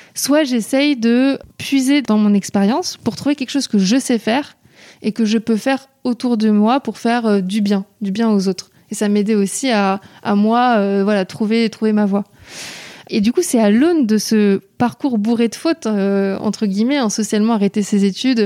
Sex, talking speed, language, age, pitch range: female, 210 wpm, French, 20-39, 205-235 Hz